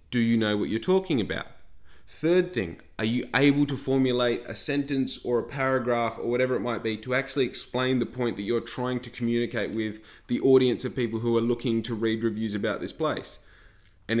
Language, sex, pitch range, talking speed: English, male, 110-130 Hz, 205 wpm